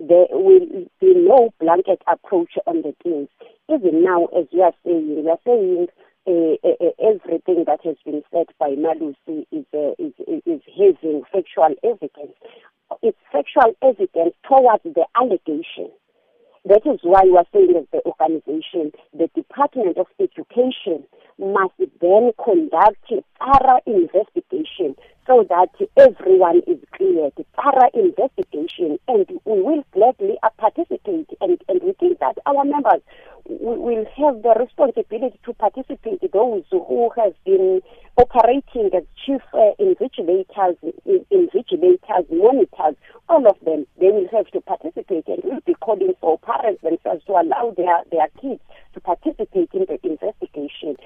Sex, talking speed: female, 145 wpm